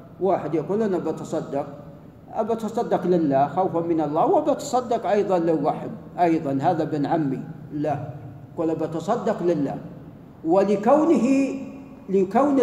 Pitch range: 170-235 Hz